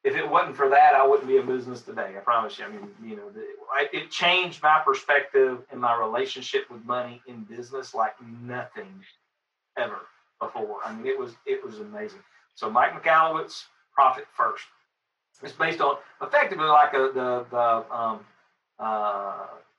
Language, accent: English, American